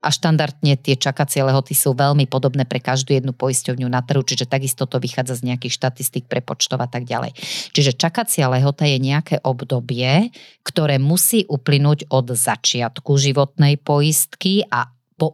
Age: 30-49